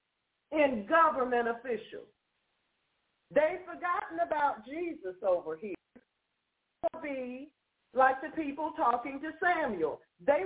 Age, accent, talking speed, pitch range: 50-69, American, 100 wpm, 245-355 Hz